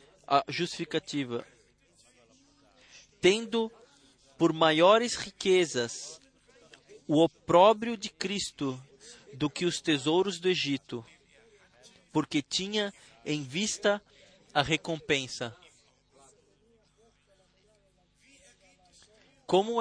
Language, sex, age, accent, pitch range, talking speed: Portuguese, male, 20-39, Brazilian, 155-200 Hz, 70 wpm